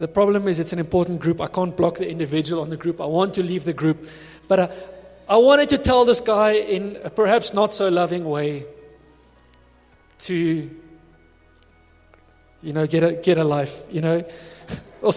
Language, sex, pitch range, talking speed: English, male, 160-220 Hz, 180 wpm